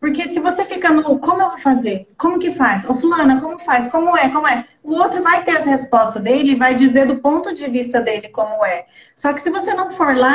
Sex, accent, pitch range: female, Brazilian, 245-305 Hz